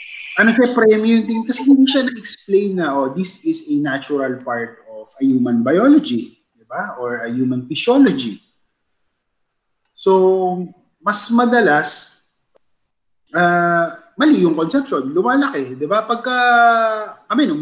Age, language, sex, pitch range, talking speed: 30-49, Filipino, male, 145-220 Hz, 125 wpm